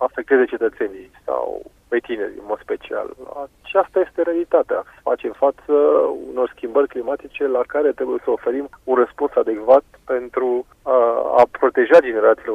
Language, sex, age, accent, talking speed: Romanian, male, 30-49, native, 140 wpm